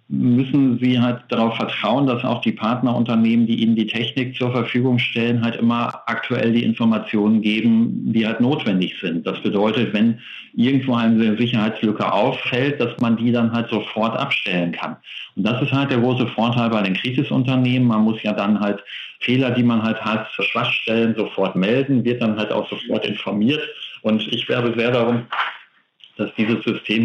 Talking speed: 175 wpm